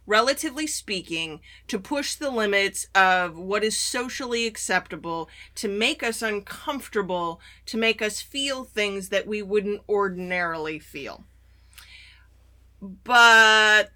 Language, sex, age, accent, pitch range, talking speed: English, female, 30-49, American, 190-275 Hz, 110 wpm